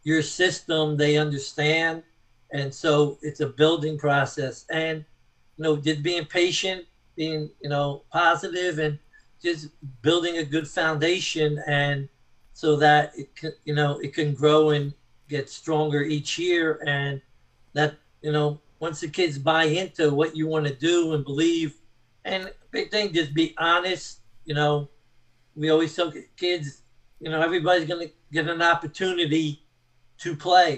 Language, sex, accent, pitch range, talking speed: English, male, American, 140-165 Hz, 155 wpm